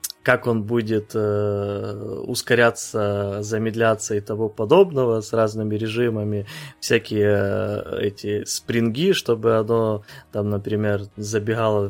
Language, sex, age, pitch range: Ukrainian, male, 20-39, 105-120 Hz